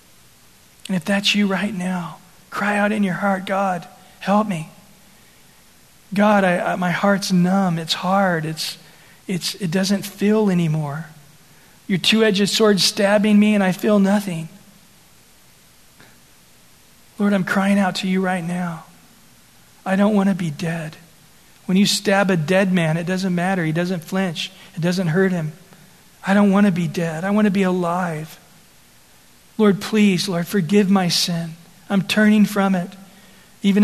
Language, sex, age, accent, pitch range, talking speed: English, male, 40-59, American, 170-195 Hz, 160 wpm